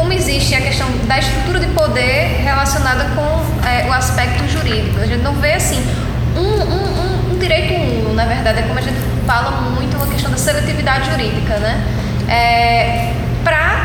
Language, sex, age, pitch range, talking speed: Portuguese, female, 10-29, 115-125 Hz, 180 wpm